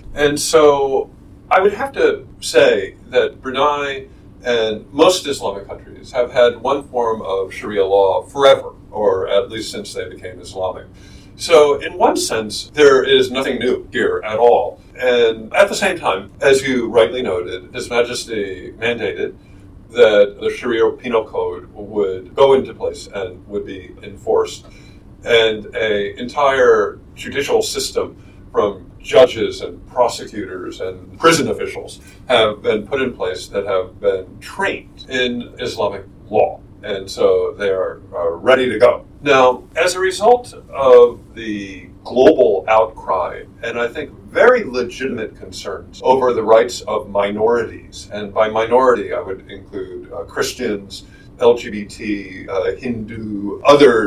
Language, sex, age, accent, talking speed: English, male, 50-69, American, 140 wpm